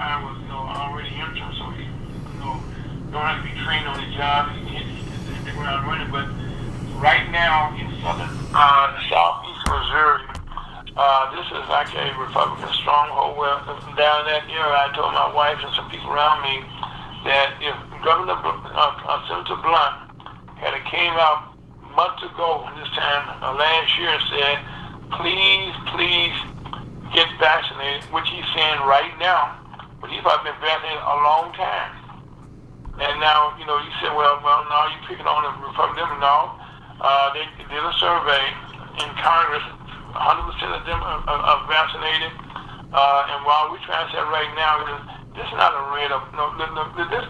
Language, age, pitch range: English, 50-69, 140-155 Hz